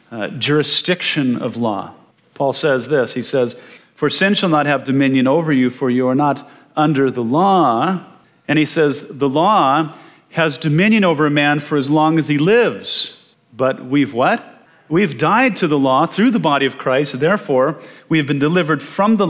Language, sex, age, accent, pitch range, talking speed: English, male, 40-59, American, 130-160 Hz, 185 wpm